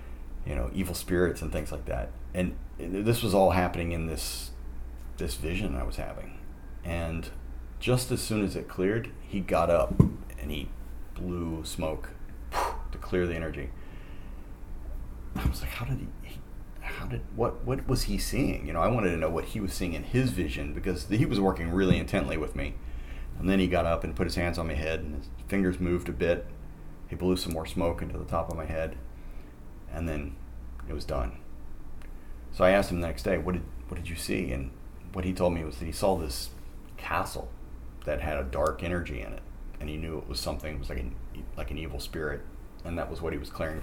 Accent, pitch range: American, 65-90 Hz